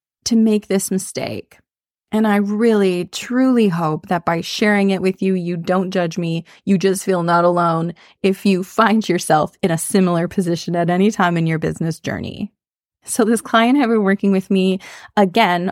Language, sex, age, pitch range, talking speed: English, female, 20-39, 175-215 Hz, 185 wpm